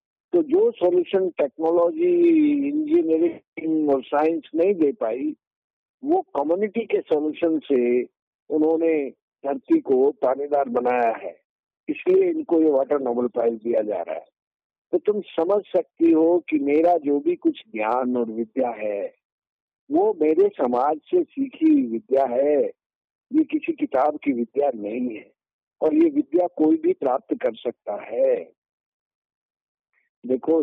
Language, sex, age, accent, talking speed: Hindi, male, 50-69, native, 135 wpm